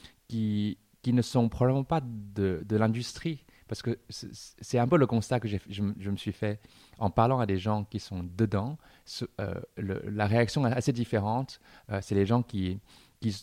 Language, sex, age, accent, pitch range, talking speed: French, male, 30-49, French, 100-125 Hz, 200 wpm